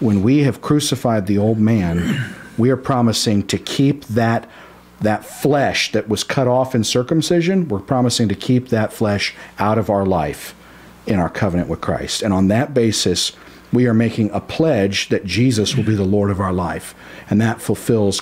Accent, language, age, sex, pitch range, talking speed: American, English, 50-69, male, 100-125 Hz, 190 wpm